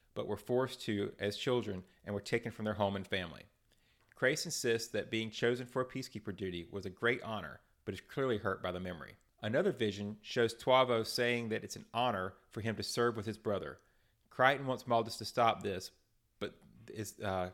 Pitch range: 100-120 Hz